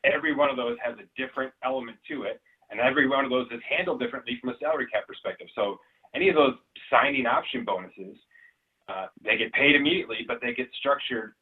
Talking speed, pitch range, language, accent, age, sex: 205 wpm, 115-135 Hz, English, American, 30-49, male